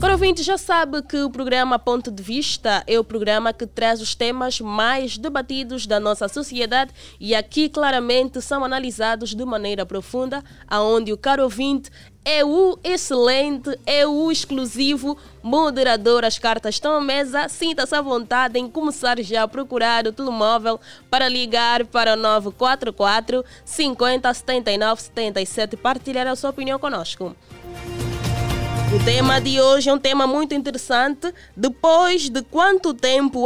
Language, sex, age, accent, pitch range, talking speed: Portuguese, female, 20-39, Brazilian, 220-275 Hz, 145 wpm